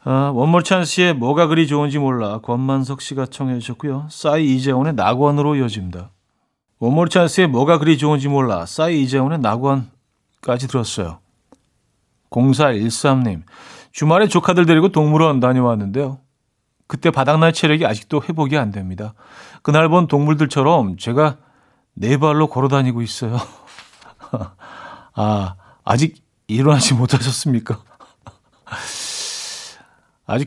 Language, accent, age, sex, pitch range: Korean, native, 40-59, male, 120-155 Hz